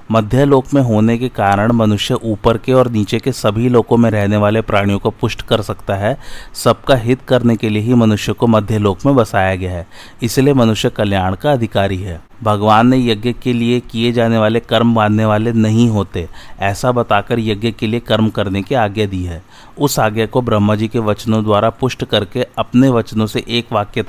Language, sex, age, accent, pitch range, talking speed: Hindi, male, 30-49, native, 105-125 Hz, 200 wpm